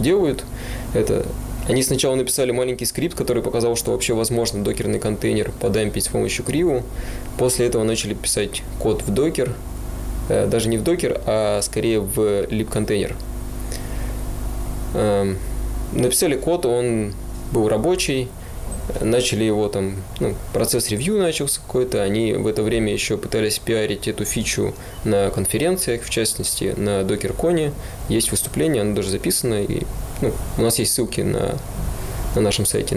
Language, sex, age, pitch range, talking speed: Russian, male, 20-39, 105-125 Hz, 140 wpm